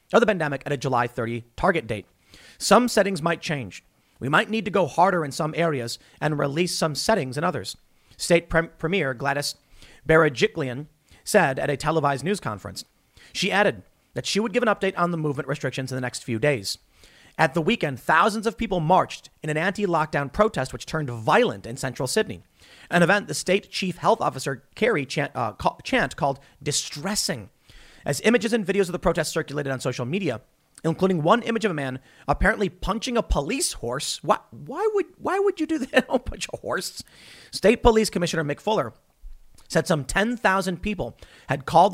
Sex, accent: male, American